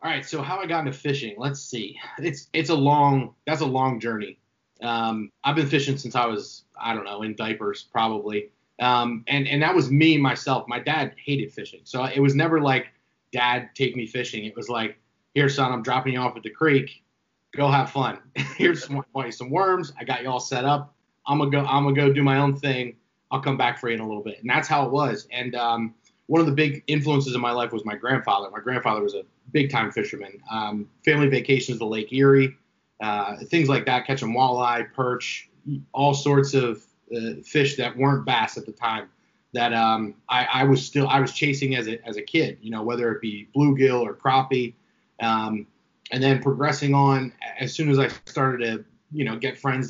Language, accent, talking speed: English, American, 220 wpm